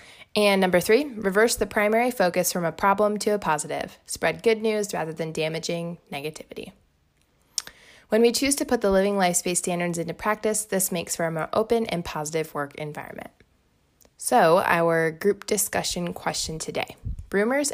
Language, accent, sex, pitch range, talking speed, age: English, American, female, 165-210 Hz, 165 wpm, 20-39